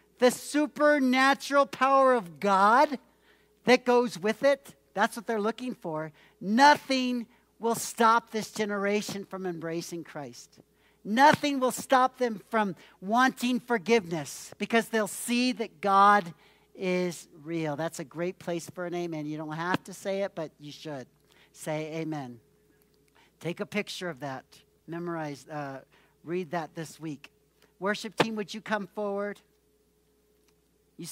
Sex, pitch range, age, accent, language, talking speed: male, 165-220 Hz, 60-79, American, English, 140 wpm